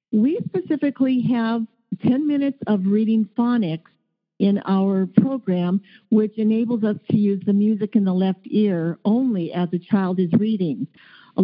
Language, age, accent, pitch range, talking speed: English, 50-69, American, 195-245 Hz, 150 wpm